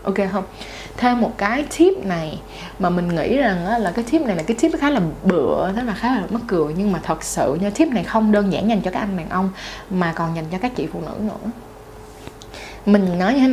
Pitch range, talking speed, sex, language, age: 185-225 Hz, 250 wpm, female, Vietnamese, 20-39